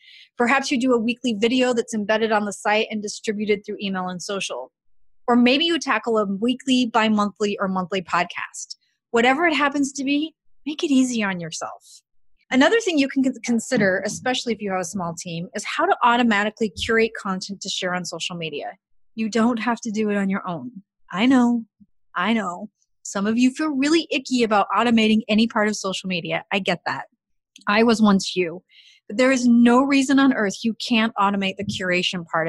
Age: 30-49